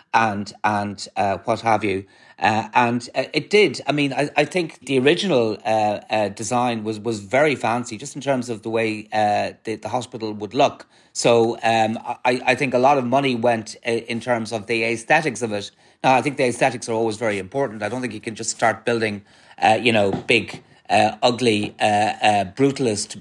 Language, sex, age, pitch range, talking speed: English, male, 30-49, 105-125 Hz, 205 wpm